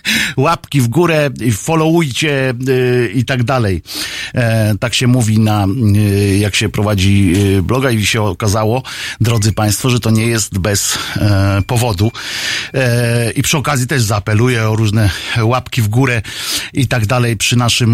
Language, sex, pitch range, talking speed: Polish, male, 105-130 Hz, 155 wpm